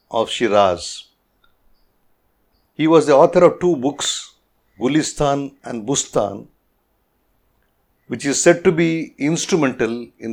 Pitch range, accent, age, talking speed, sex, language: 115-150 Hz, Indian, 50-69, 110 wpm, male, English